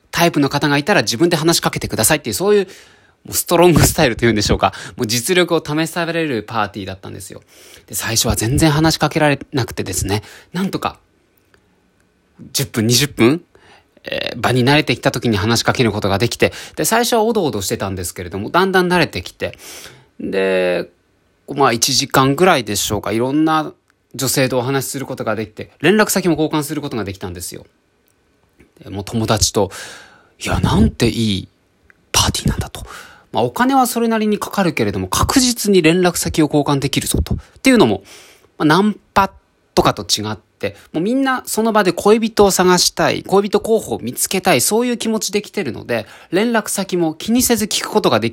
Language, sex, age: Japanese, male, 20-39